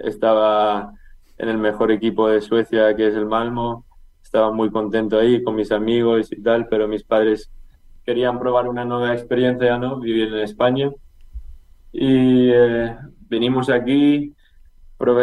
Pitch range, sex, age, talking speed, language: 105-120 Hz, male, 20-39, 150 wpm, Spanish